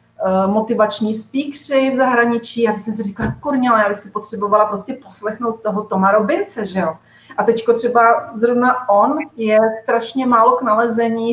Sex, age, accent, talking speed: female, 30-49, native, 165 wpm